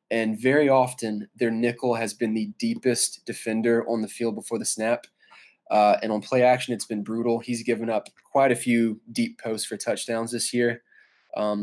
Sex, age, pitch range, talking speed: male, 20-39, 110-125 Hz, 190 wpm